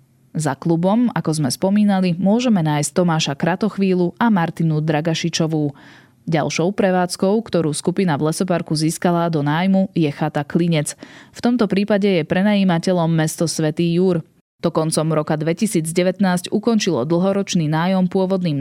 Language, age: Slovak, 20-39